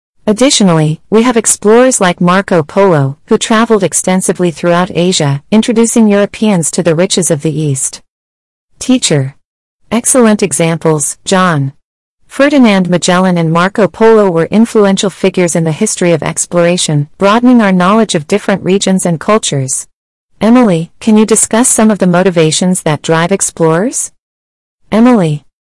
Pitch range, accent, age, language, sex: 160-210 Hz, American, 40-59, Chinese, female